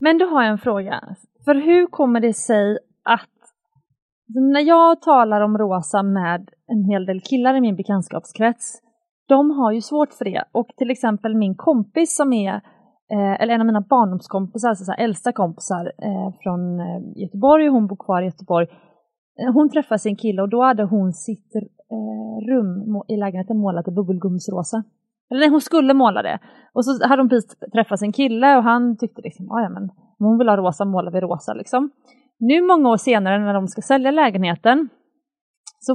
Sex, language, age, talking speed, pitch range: female, Swedish, 30-49, 180 wpm, 200-270 Hz